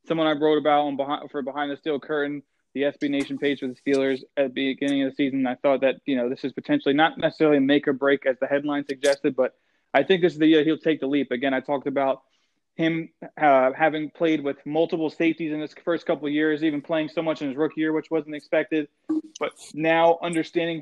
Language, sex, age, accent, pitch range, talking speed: English, male, 20-39, American, 140-165 Hz, 240 wpm